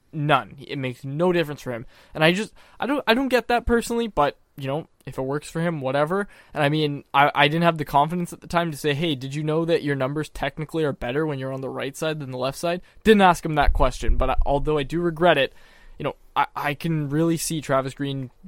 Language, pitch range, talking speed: English, 135-165 Hz, 265 wpm